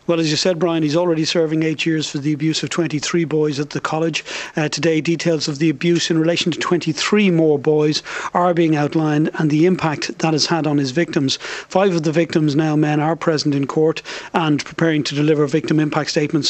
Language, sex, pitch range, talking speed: English, male, 155-175 Hz, 220 wpm